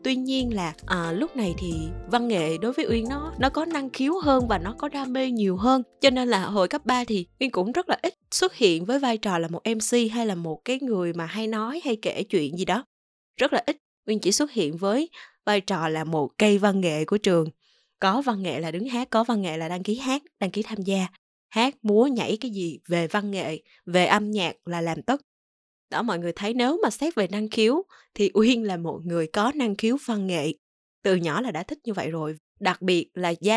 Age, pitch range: 20-39, 175-240 Hz